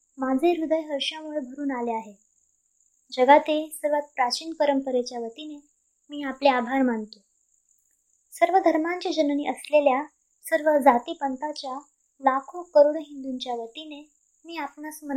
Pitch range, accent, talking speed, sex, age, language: 260-310 Hz, native, 85 wpm, male, 20-39, Marathi